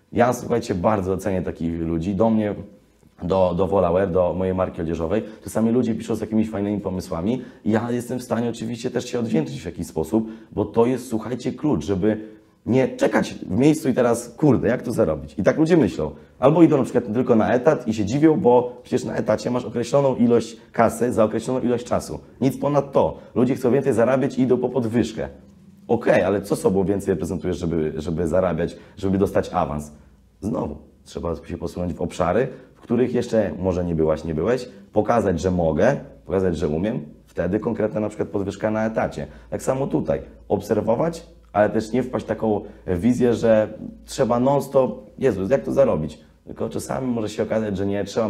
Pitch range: 85-115 Hz